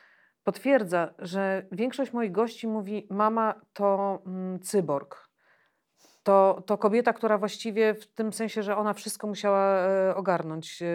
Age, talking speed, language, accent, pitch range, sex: 40-59, 125 wpm, Polish, native, 185-215 Hz, female